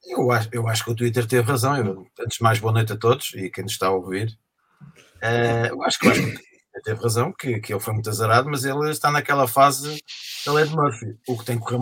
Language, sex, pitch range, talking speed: English, male, 115-140 Hz, 255 wpm